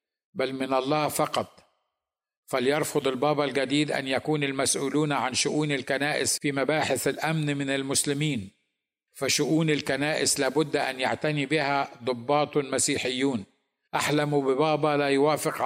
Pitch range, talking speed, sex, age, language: 130-150 Hz, 115 wpm, male, 50-69, Arabic